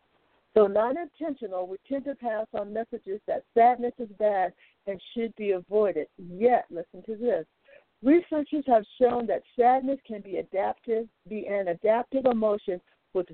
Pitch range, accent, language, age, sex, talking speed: 190-250 Hz, American, English, 60-79, female, 150 wpm